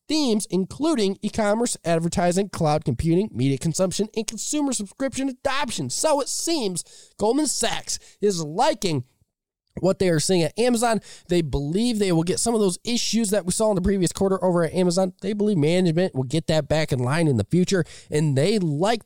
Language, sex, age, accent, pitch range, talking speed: English, male, 20-39, American, 155-205 Hz, 190 wpm